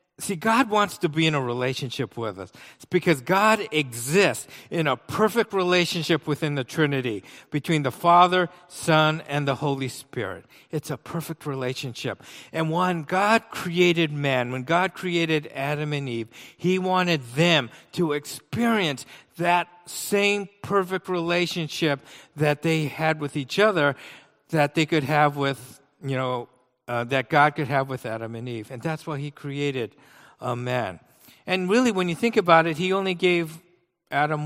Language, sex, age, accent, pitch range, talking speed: English, male, 50-69, American, 135-175 Hz, 160 wpm